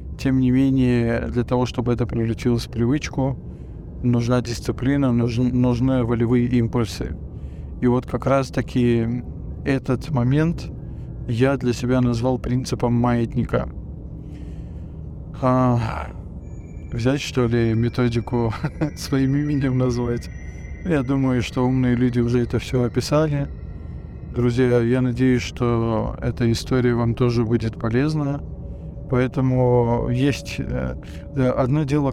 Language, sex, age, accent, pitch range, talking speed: Russian, male, 20-39, native, 115-130 Hz, 110 wpm